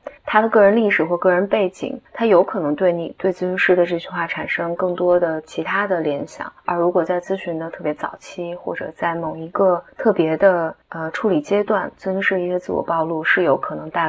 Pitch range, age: 175-210 Hz, 20-39